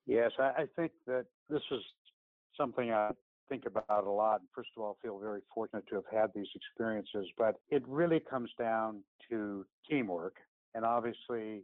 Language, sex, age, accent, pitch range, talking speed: English, male, 60-79, American, 105-125 Hz, 165 wpm